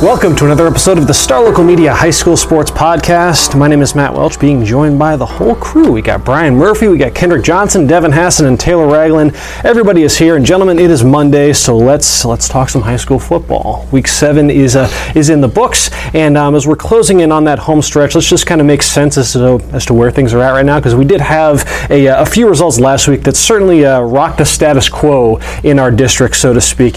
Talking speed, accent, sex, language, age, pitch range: 245 wpm, American, male, English, 30-49, 135-160 Hz